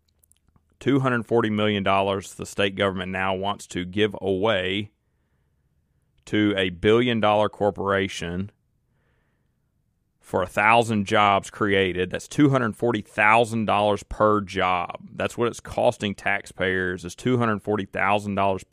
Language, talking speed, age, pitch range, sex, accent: English, 95 wpm, 30-49, 95-110 Hz, male, American